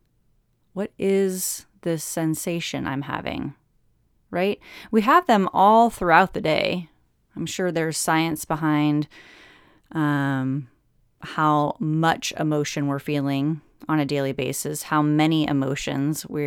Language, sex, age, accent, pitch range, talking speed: English, female, 30-49, American, 145-195 Hz, 120 wpm